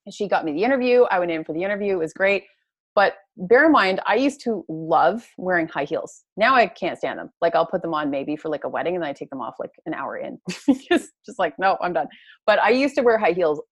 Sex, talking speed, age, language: female, 275 wpm, 30-49, English